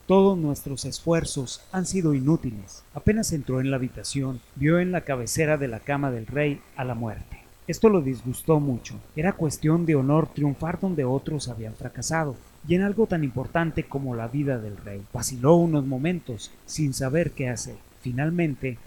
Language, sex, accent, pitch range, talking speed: Spanish, male, Mexican, 120-165 Hz, 170 wpm